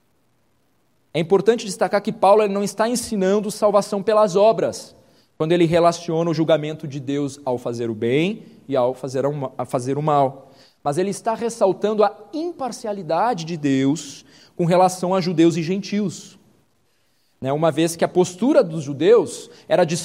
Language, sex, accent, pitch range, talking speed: Portuguese, male, Brazilian, 150-210 Hz, 150 wpm